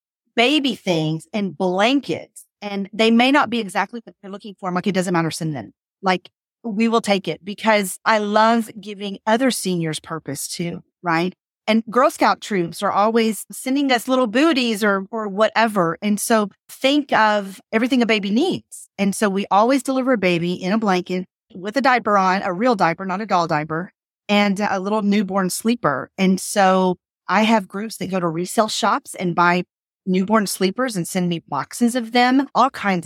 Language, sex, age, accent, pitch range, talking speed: English, female, 40-59, American, 180-225 Hz, 185 wpm